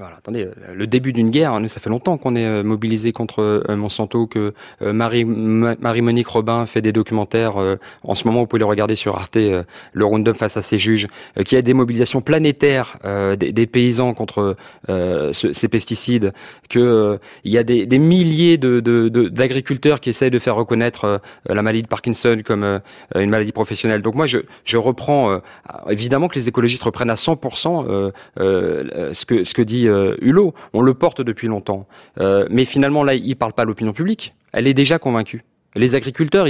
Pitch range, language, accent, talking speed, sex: 110-135 Hz, French, French, 205 wpm, male